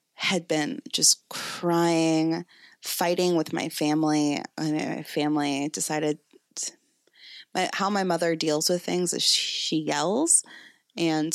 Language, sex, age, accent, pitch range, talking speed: English, female, 20-39, American, 155-175 Hz, 135 wpm